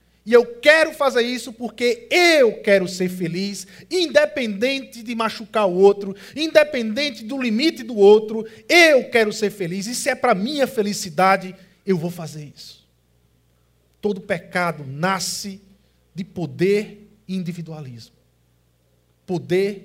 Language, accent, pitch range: Portuguese, Brazilian, 175-250 Hz